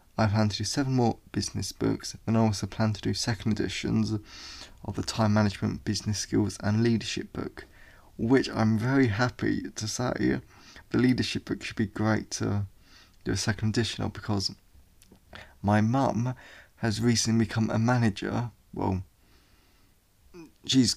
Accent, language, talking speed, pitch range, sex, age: British, English, 150 wpm, 100-115 Hz, male, 20-39